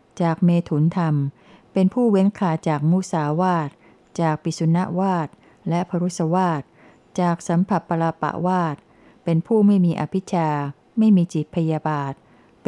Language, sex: Thai, female